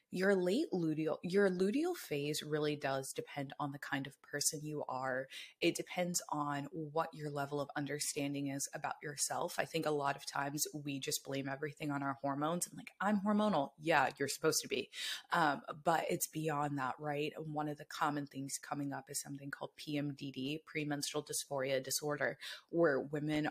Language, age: English, 20-39